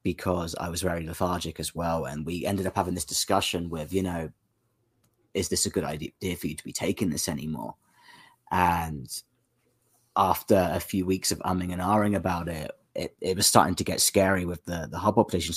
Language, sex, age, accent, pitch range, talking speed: English, male, 30-49, British, 85-95 Hz, 200 wpm